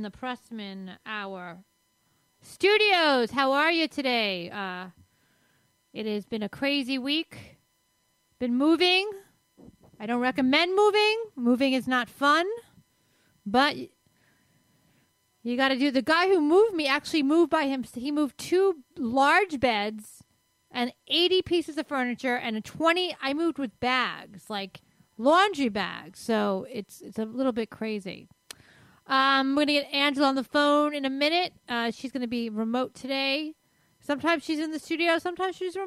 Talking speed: 150 wpm